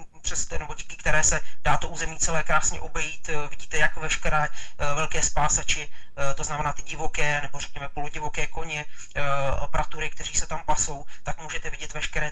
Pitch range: 135-155 Hz